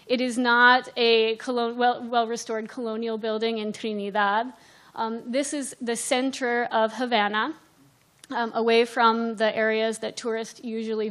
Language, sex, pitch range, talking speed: English, female, 225-265 Hz, 130 wpm